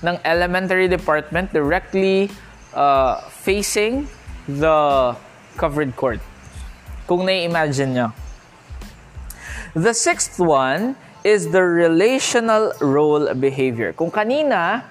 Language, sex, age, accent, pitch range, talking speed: Filipino, male, 20-39, native, 145-210 Hz, 90 wpm